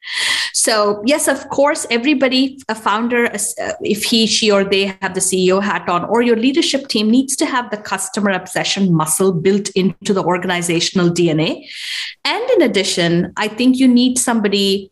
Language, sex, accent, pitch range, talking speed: English, female, Indian, 190-255 Hz, 165 wpm